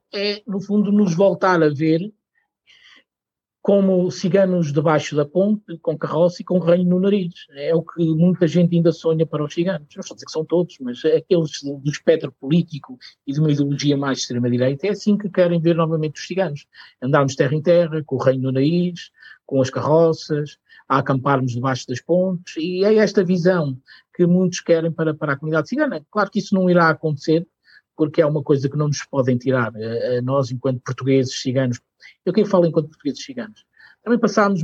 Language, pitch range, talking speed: Portuguese, 140-175 Hz, 190 wpm